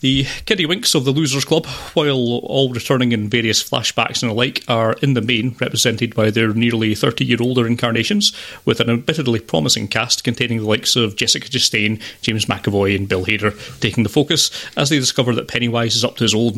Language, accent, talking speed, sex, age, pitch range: English, British, 200 wpm, male, 30-49, 110-135 Hz